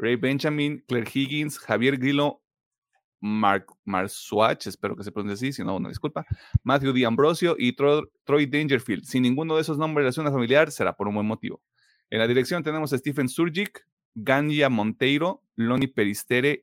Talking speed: 175 wpm